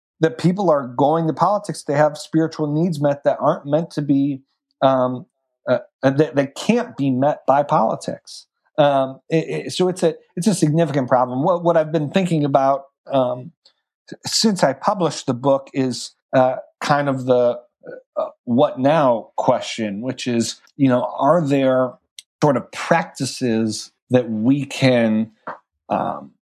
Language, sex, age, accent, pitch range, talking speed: English, male, 50-69, American, 120-150 Hz, 155 wpm